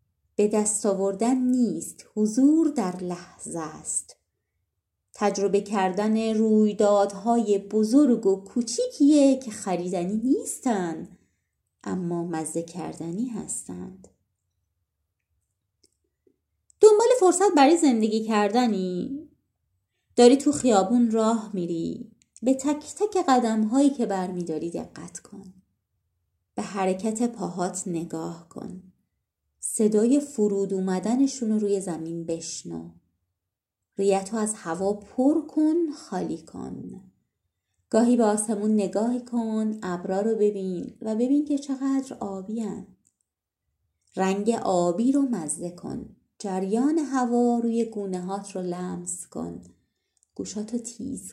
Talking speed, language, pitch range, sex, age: 100 wpm, Persian, 165-240 Hz, female, 30-49